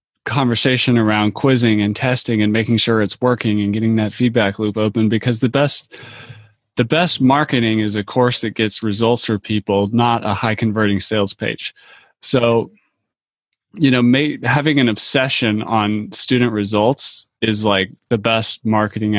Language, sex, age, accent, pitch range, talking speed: English, male, 20-39, American, 110-125 Hz, 155 wpm